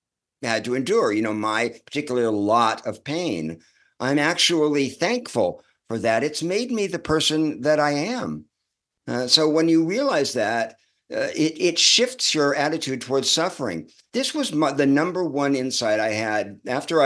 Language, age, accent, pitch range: English, 50-69, American, 110-145 Hz